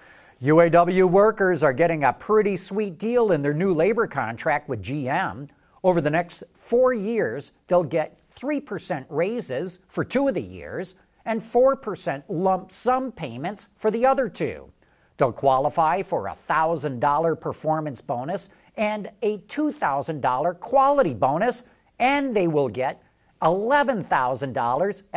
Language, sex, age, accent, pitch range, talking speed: English, male, 50-69, American, 150-220 Hz, 130 wpm